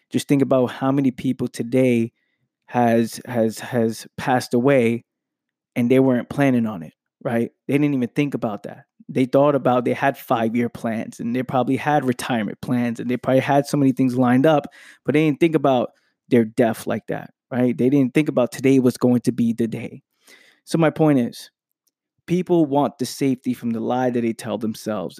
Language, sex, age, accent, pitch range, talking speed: English, male, 20-39, American, 120-145 Hz, 200 wpm